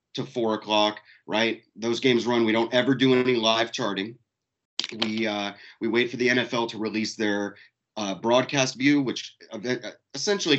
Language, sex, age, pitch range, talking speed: English, male, 30-49, 105-130 Hz, 165 wpm